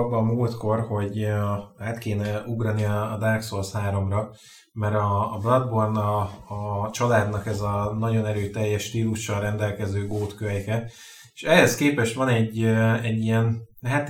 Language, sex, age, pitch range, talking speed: Hungarian, male, 20-39, 110-120 Hz, 130 wpm